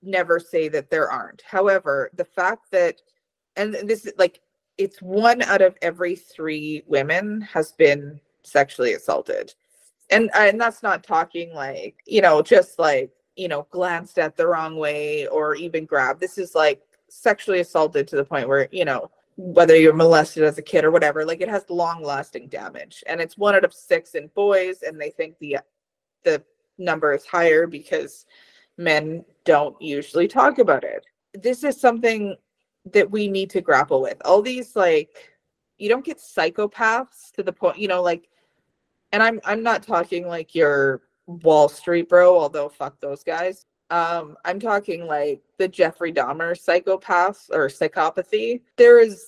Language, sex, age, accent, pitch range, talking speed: English, female, 20-39, American, 165-235 Hz, 170 wpm